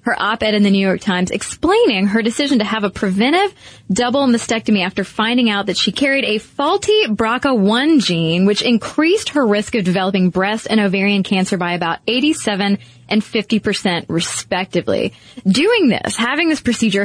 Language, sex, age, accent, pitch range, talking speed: English, female, 20-39, American, 190-230 Hz, 165 wpm